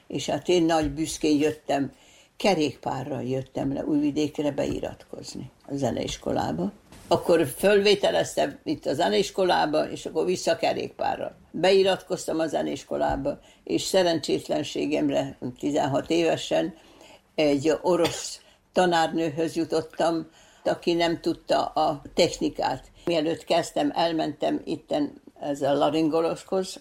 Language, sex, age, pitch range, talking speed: Hungarian, female, 60-79, 160-195 Hz, 100 wpm